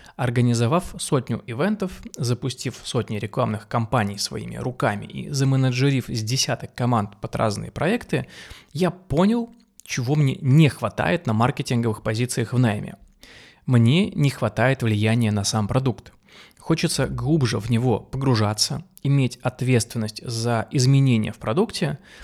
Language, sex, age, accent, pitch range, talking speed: Russian, male, 20-39, native, 115-150 Hz, 125 wpm